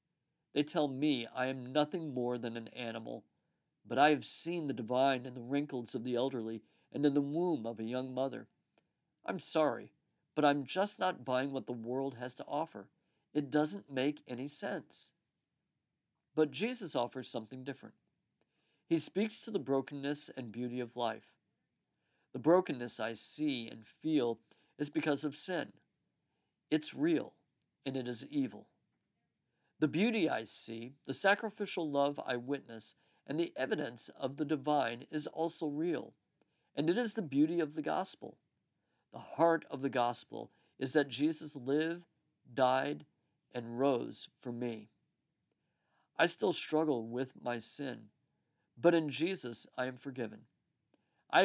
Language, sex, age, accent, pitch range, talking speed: English, male, 50-69, American, 125-155 Hz, 155 wpm